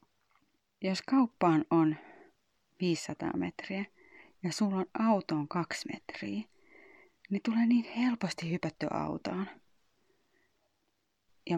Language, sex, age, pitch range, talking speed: Finnish, female, 30-49, 160-225 Hz, 95 wpm